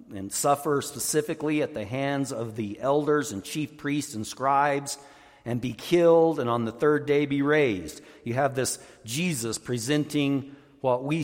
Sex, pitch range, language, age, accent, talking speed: male, 105-145 Hz, English, 50-69, American, 165 wpm